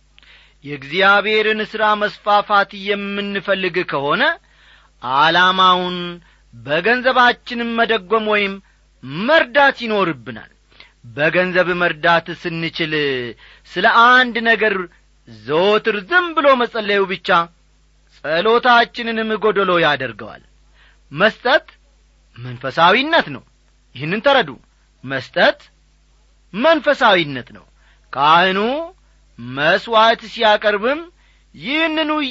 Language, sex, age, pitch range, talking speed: Amharic, male, 40-59, 160-240 Hz, 70 wpm